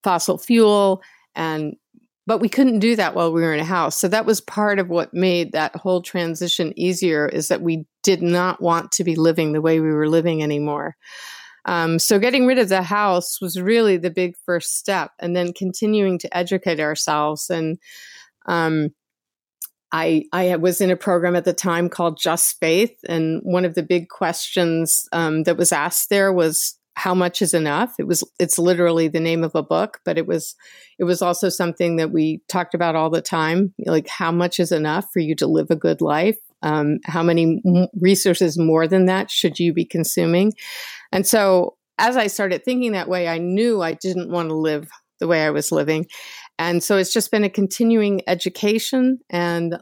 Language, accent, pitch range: English, American, 165-195 Hz